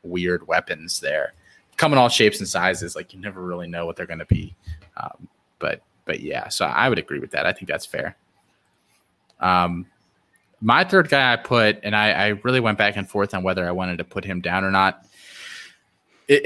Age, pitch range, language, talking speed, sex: 20-39, 95-115 Hz, English, 210 wpm, male